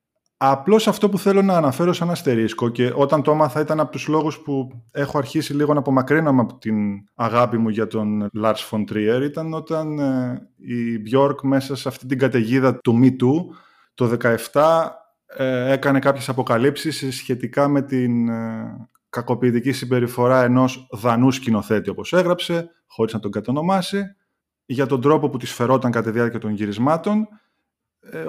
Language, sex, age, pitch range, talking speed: Greek, male, 20-39, 120-160 Hz, 165 wpm